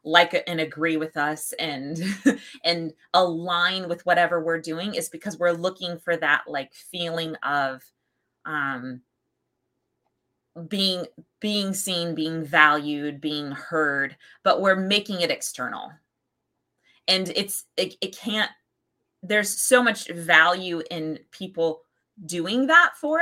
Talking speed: 125 wpm